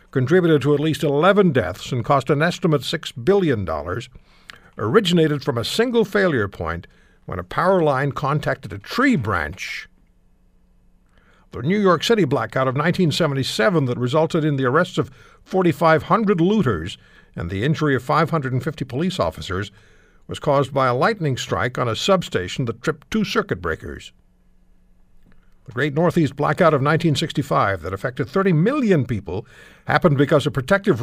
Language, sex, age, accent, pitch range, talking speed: English, male, 60-79, American, 125-170 Hz, 150 wpm